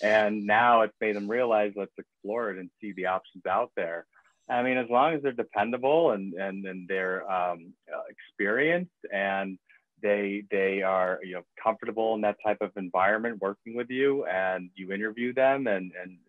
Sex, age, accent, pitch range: male, 30-49, American, 95-110 Hz